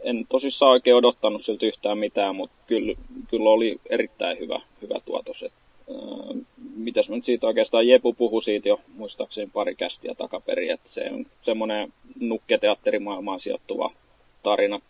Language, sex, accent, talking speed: Finnish, male, native, 150 wpm